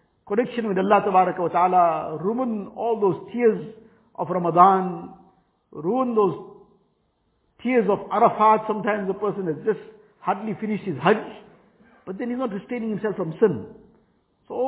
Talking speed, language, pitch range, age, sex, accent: 140 wpm, English, 175-225 Hz, 50-69, male, Indian